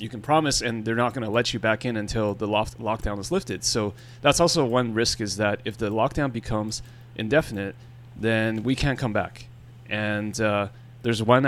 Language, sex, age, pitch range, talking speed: English, male, 30-49, 110-125 Hz, 200 wpm